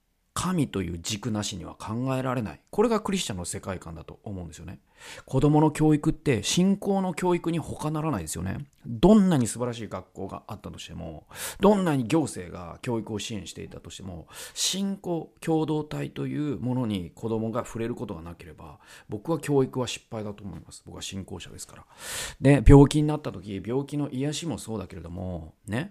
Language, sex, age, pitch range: Japanese, male, 40-59, 95-150 Hz